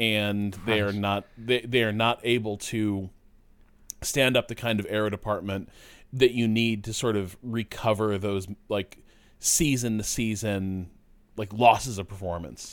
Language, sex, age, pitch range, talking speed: English, male, 30-49, 95-115 Hz, 145 wpm